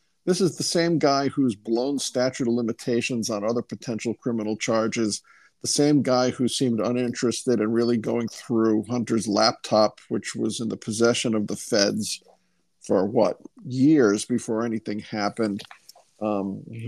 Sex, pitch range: male, 110-130 Hz